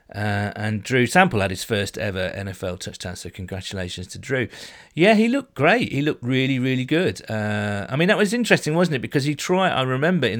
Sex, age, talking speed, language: male, 40-59, 215 wpm, English